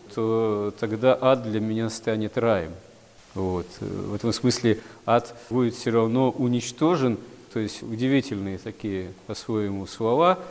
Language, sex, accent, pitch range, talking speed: Russian, male, native, 105-120 Hz, 130 wpm